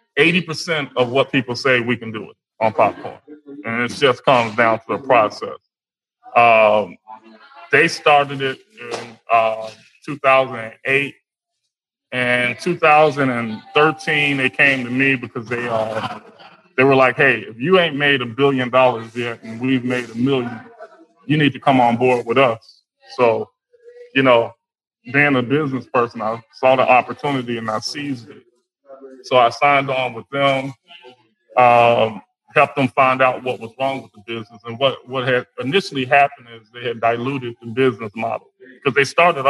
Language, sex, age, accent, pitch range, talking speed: English, male, 20-39, American, 120-145 Hz, 160 wpm